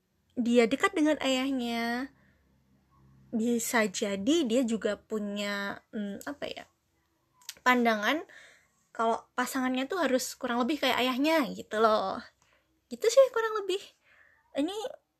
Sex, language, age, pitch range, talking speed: female, Indonesian, 20-39, 220-275 Hz, 110 wpm